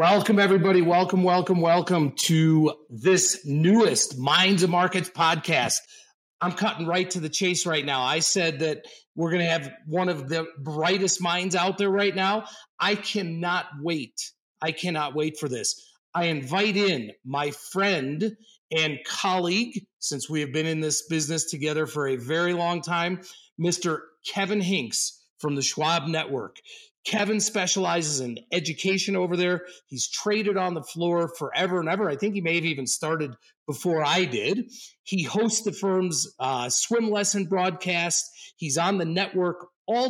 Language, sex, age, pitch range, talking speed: English, male, 40-59, 160-195 Hz, 160 wpm